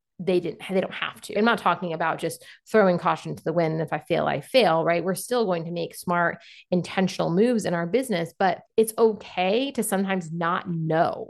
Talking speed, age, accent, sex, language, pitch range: 210 wpm, 30-49, American, female, English, 175-215 Hz